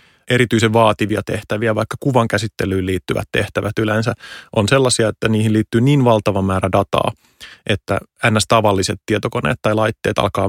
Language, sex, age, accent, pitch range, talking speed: Finnish, male, 30-49, native, 100-115 Hz, 135 wpm